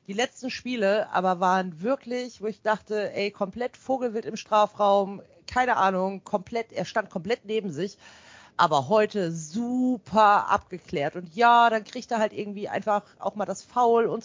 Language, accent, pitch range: German, German, 190-240 Hz